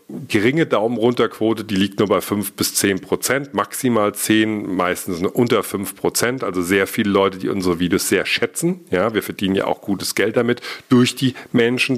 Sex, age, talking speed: male, 40-59, 180 wpm